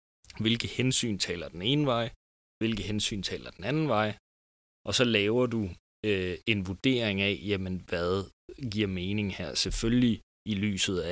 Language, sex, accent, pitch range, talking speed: Danish, male, native, 85-110 Hz, 155 wpm